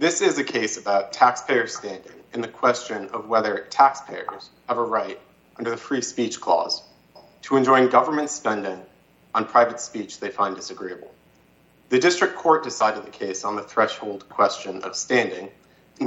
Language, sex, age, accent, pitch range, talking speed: English, male, 30-49, American, 100-135 Hz, 165 wpm